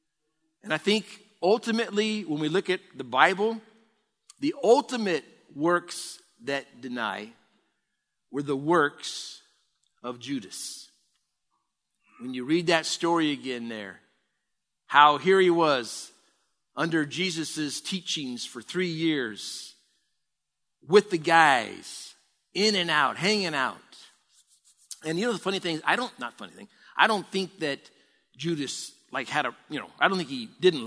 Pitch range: 140-185 Hz